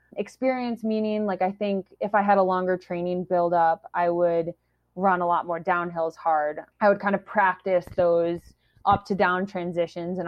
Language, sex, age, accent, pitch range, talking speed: English, female, 20-39, American, 170-200 Hz, 180 wpm